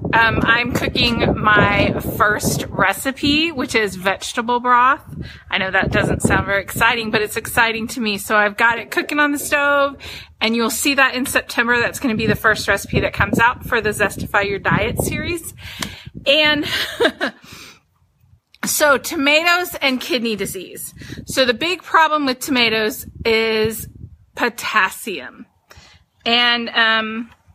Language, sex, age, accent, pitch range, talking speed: English, female, 30-49, American, 230-295 Hz, 150 wpm